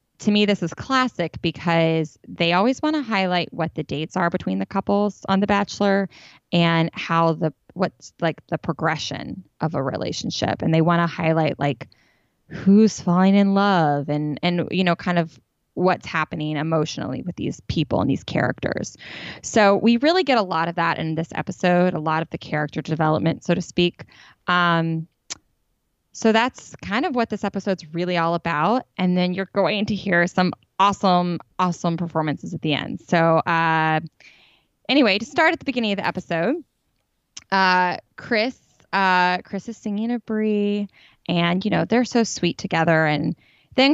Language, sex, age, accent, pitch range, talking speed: English, female, 20-39, American, 165-205 Hz, 175 wpm